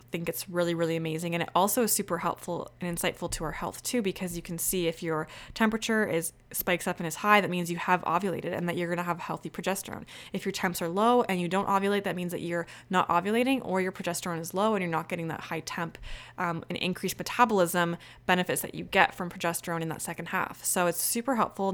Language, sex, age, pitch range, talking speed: English, female, 20-39, 170-195 Hz, 245 wpm